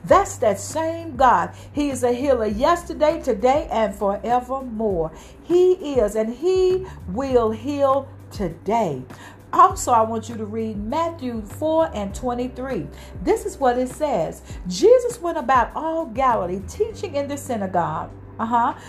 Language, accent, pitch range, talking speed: English, American, 220-325 Hz, 140 wpm